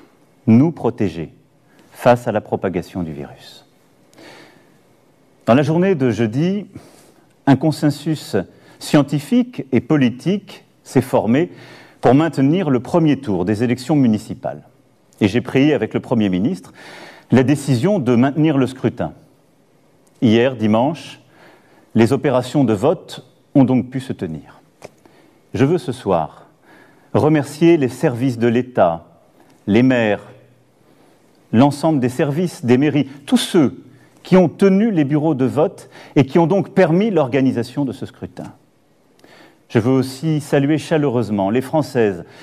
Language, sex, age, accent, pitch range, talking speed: Italian, male, 40-59, French, 120-155 Hz, 130 wpm